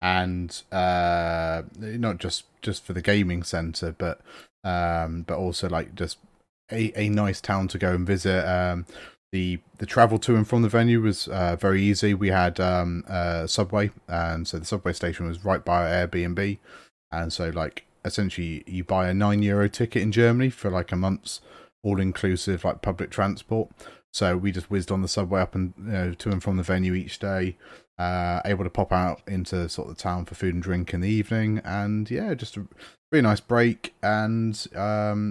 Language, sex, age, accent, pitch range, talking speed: English, male, 30-49, British, 90-100 Hz, 195 wpm